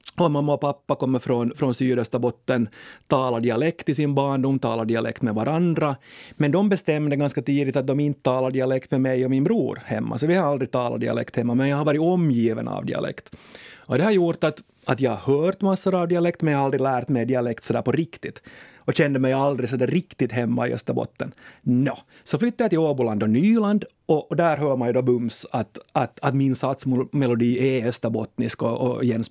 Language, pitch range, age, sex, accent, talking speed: Swedish, 125-150 Hz, 30-49, male, Finnish, 215 wpm